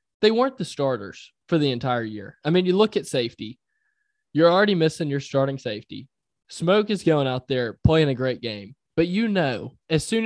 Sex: male